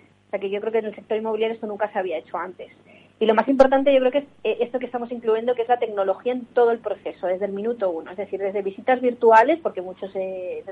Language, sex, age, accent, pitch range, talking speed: Spanish, female, 30-49, Spanish, 200-235 Hz, 270 wpm